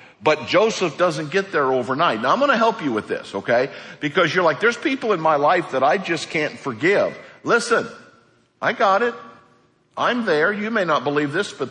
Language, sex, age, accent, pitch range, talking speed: English, male, 60-79, American, 115-175 Hz, 205 wpm